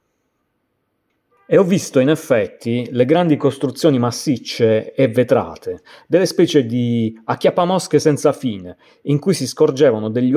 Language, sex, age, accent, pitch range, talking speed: Italian, male, 30-49, native, 120-160 Hz, 125 wpm